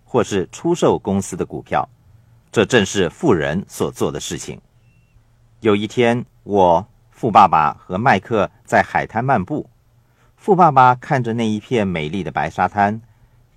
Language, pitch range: Chinese, 110-125 Hz